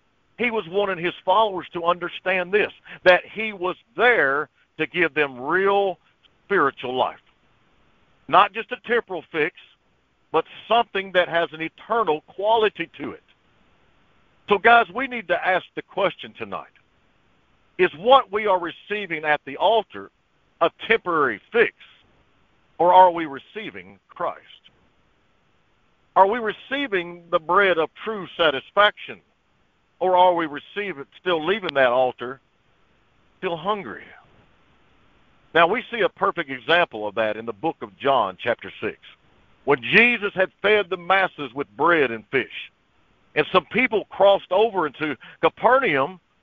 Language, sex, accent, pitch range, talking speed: English, male, American, 150-205 Hz, 135 wpm